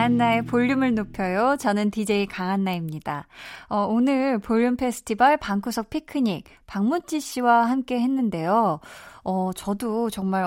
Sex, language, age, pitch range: female, Korean, 20-39, 180-245 Hz